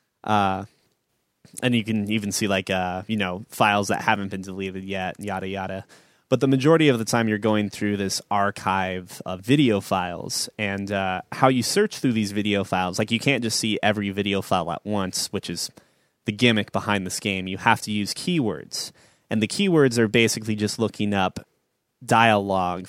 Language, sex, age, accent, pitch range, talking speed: English, male, 20-39, American, 100-115 Hz, 190 wpm